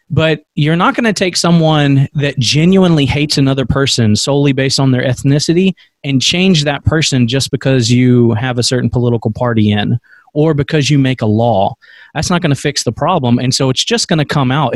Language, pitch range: English, 125-155 Hz